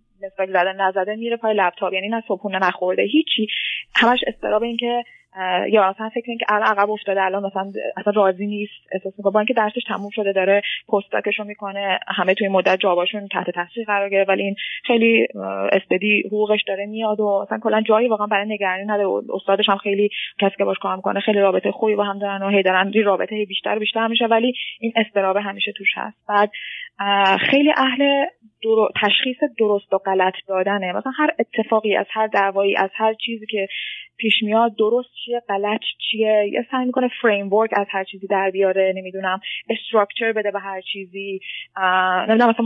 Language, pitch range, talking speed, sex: Persian, 195-230 Hz, 190 wpm, female